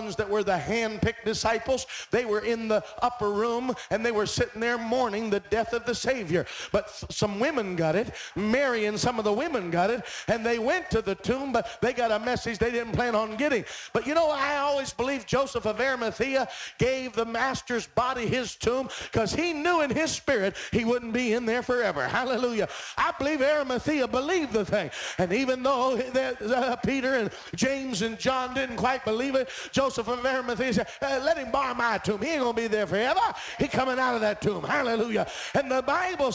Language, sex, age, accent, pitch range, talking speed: English, male, 50-69, American, 225-265 Hz, 200 wpm